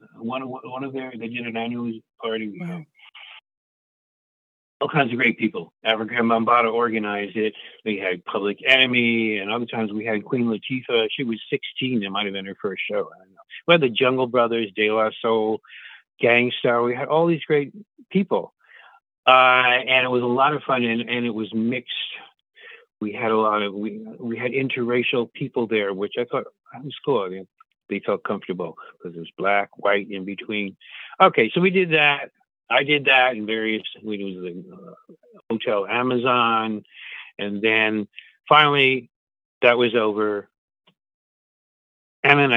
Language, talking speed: English, 165 wpm